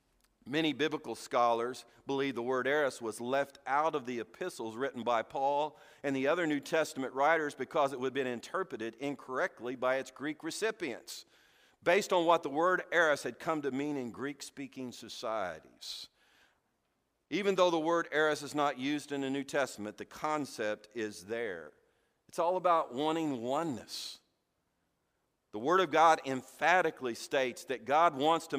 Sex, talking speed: male, 160 wpm